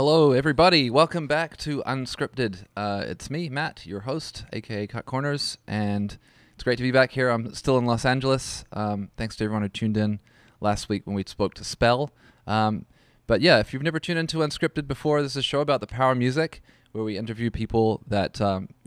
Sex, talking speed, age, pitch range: male, 210 wpm, 20-39, 105-140 Hz